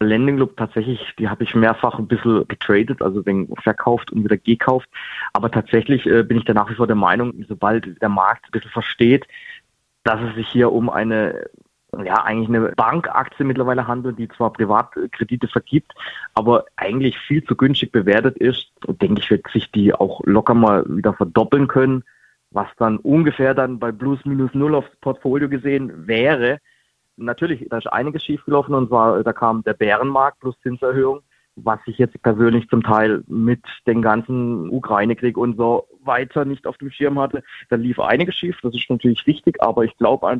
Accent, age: German, 30-49